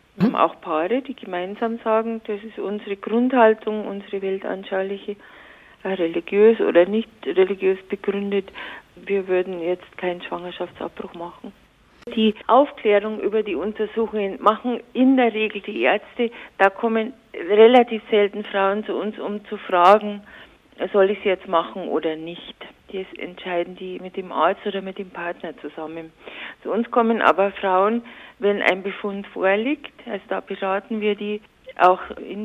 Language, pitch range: German, 185-220 Hz